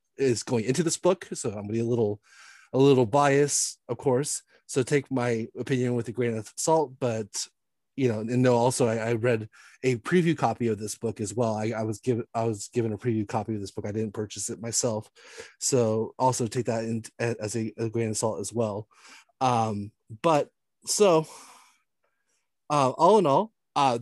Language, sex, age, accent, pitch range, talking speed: English, male, 30-49, American, 115-135 Hz, 200 wpm